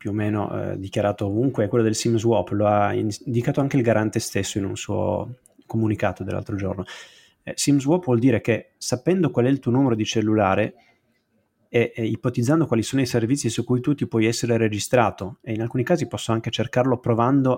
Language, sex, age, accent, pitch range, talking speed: Italian, male, 30-49, native, 105-125 Hz, 200 wpm